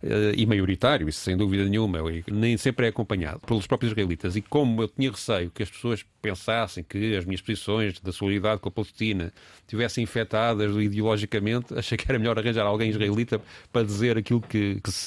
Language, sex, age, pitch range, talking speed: Portuguese, male, 30-49, 105-135 Hz, 185 wpm